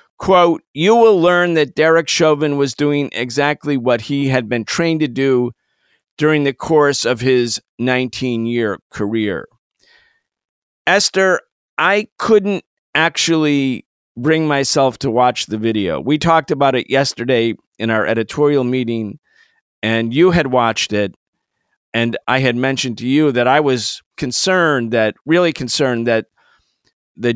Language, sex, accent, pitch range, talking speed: English, male, American, 125-155 Hz, 140 wpm